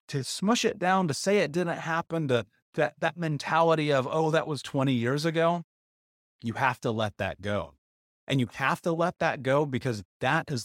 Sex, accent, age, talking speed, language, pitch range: male, American, 30-49, 210 wpm, English, 110-155 Hz